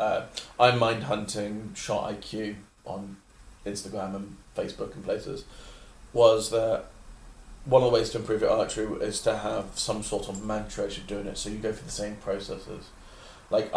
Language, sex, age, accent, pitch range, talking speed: English, male, 30-49, British, 105-120 Hz, 175 wpm